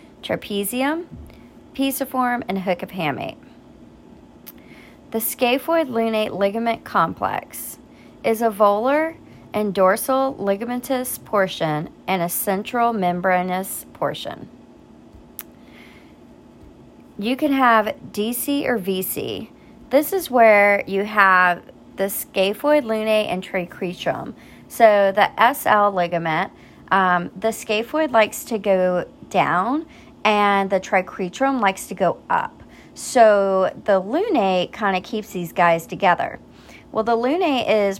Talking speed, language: 105 wpm, English